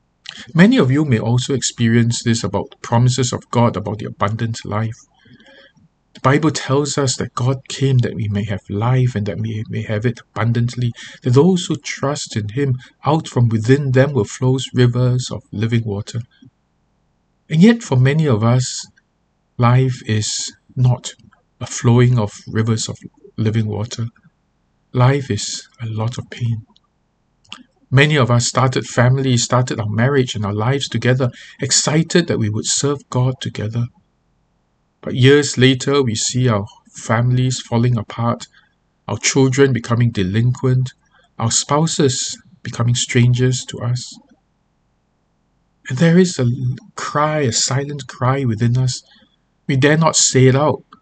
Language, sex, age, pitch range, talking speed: English, male, 50-69, 115-135 Hz, 150 wpm